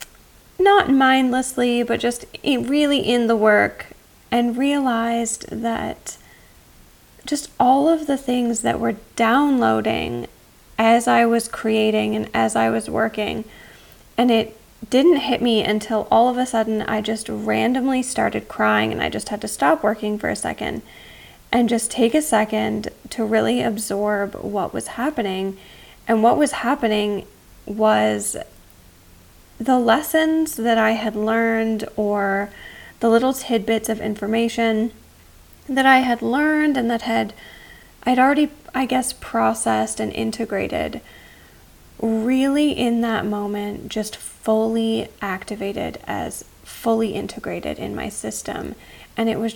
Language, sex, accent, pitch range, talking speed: English, female, American, 205-245 Hz, 135 wpm